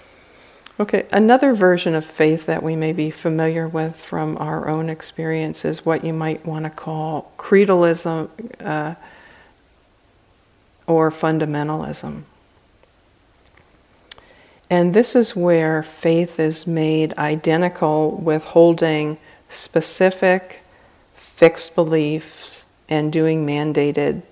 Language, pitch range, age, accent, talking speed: English, 155-165 Hz, 50-69, American, 105 wpm